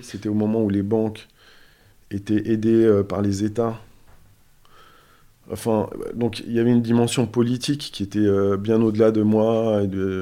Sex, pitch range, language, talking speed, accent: male, 100-115 Hz, French, 170 wpm, French